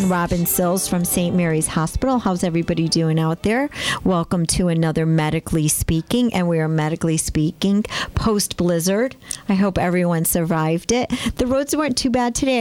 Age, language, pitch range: 50-69, English, 155-190 Hz